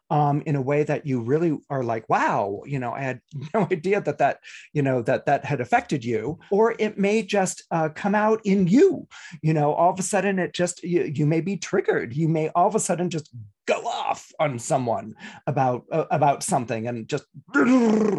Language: English